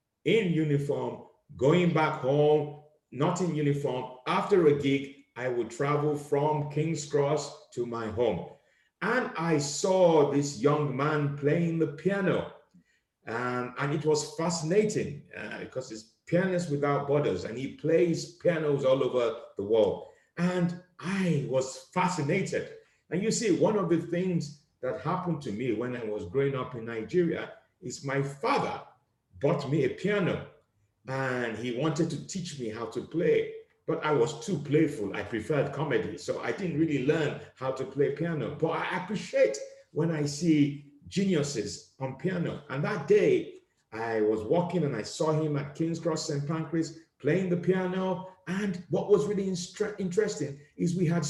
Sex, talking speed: male, 165 wpm